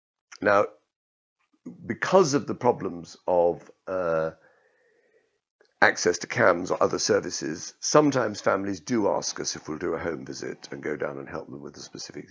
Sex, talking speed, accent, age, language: male, 160 wpm, British, 50-69, English